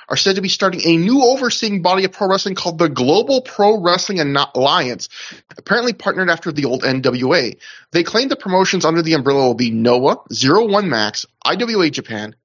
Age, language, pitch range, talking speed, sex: 30-49, English, 125-190 Hz, 200 wpm, male